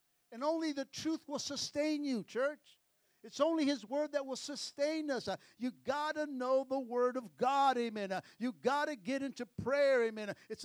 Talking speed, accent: 185 wpm, American